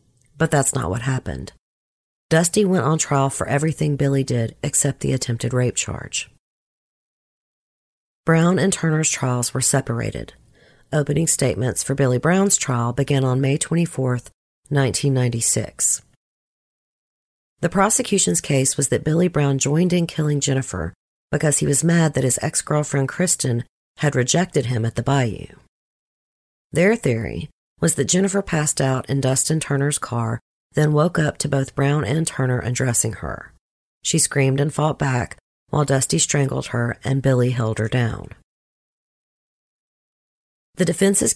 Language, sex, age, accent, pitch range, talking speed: English, female, 40-59, American, 125-155 Hz, 140 wpm